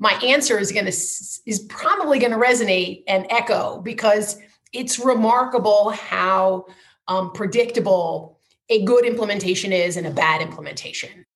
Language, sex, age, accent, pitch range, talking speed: English, female, 30-49, American, 195-255 Hz, 135 wpm